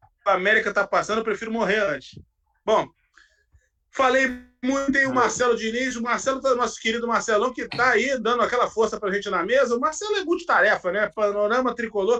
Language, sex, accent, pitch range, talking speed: Portuguese, male, Brazilian, 215-300 Hz, 185 wpm